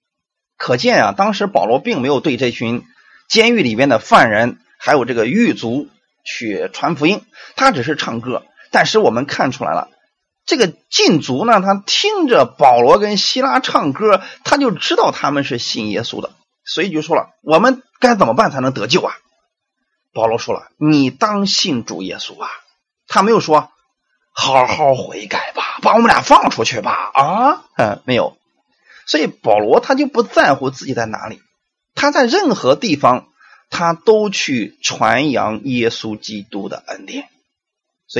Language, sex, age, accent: Chinese, male, 30-49, native